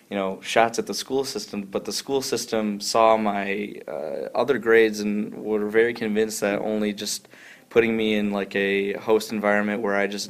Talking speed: 190 wpm